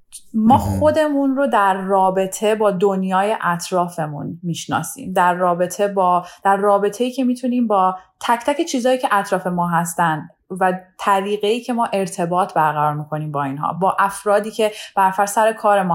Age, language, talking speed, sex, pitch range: 20-39, Persian, 150 wpm, female, 175-220 Hz